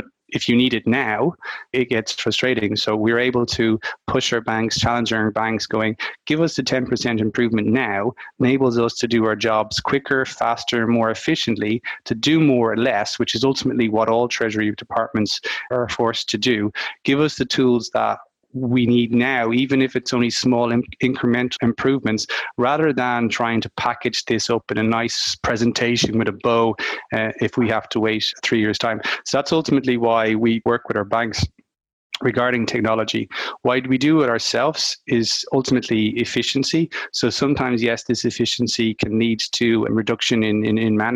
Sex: male